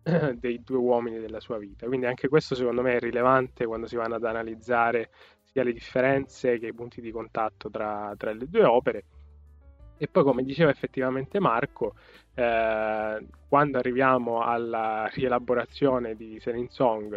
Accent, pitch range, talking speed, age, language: native, 110-130 Hz, 155 wpm, 10-29, Italian